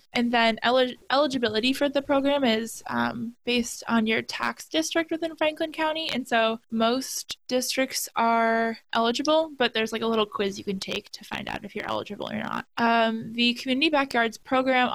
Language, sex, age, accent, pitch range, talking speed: English, female, 10-29, American, 220-255 Hz, 175 wpm